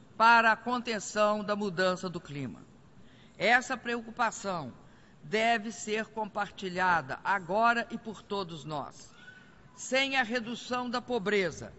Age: 50-69